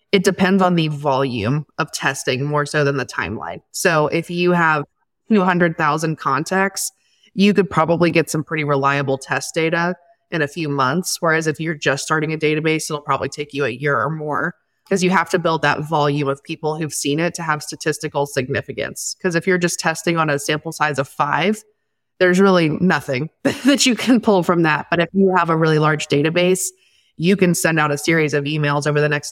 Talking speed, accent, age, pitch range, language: 205 wpm, American, 20-39, 145-170 Hz, English